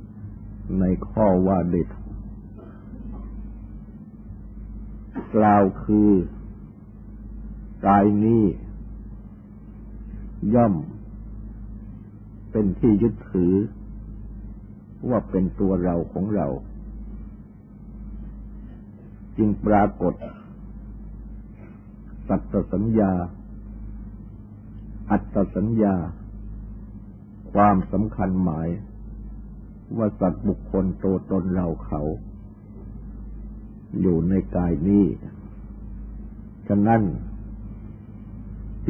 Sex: male